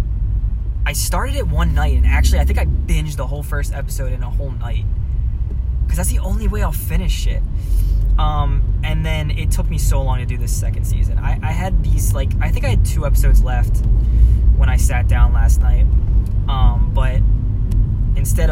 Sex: male